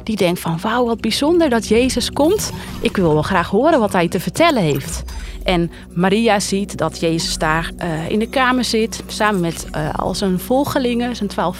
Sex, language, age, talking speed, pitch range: female, Dutch, 30-49, 195 wpm, 180-260 Hz